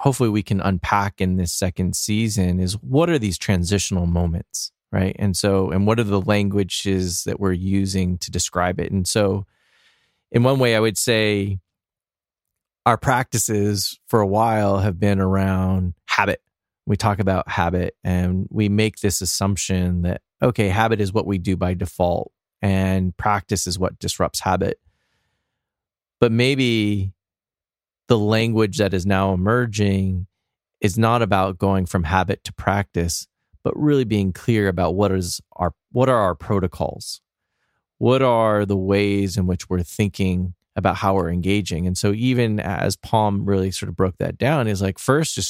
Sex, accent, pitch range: male, American, 95-110 Hz